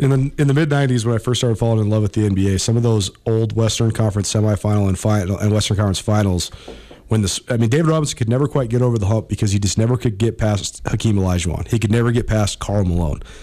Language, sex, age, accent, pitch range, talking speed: English, male, 40-59, American, 105-140 Hz, 255 wpm